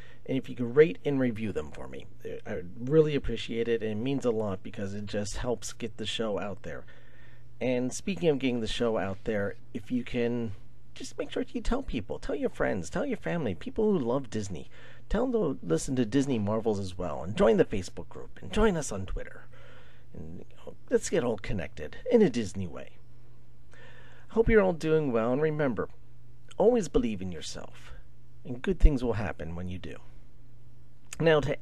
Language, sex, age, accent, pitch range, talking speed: English, male, 40-59, American, 105-135 Hz, 200 wpm